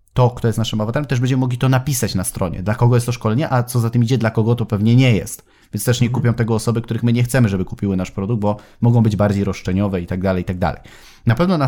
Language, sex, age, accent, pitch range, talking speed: Polish, male, 30-49, native, 110-130 Hz, 290 wpm